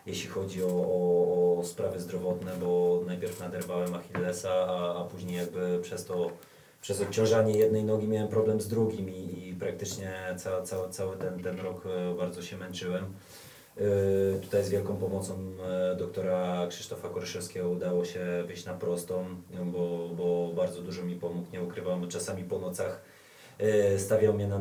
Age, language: 20-39, Polish